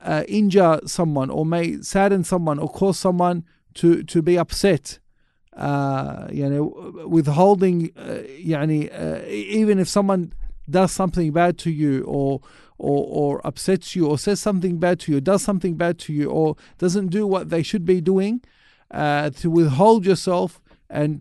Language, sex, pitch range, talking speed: English, male, 155-190 Hz, 170 wpm